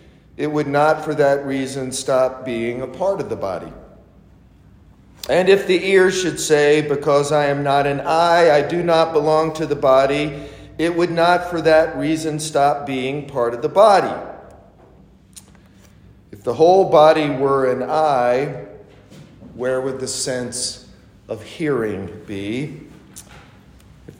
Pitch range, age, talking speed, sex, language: 120-150 Hz, 50-69, 145 wpm, male, English